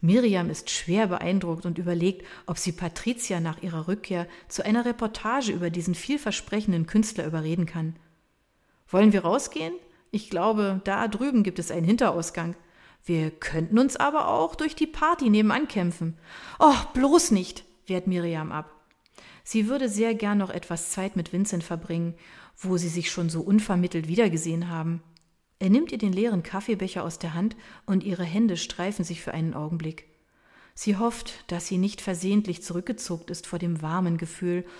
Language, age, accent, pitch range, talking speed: German, 40-59, German, 170-215 Hz, 165 wpm